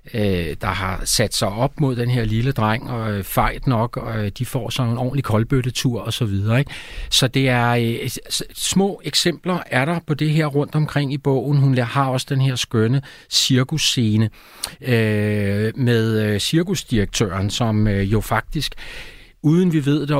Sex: male